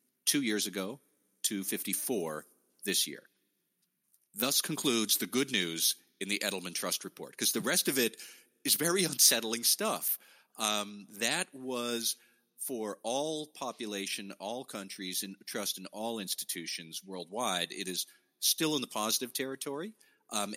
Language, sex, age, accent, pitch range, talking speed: English, male, 40-59, American, 95-130 Hz, 135 wpm